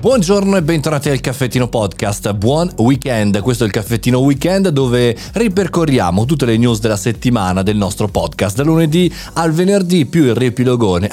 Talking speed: 160 wpm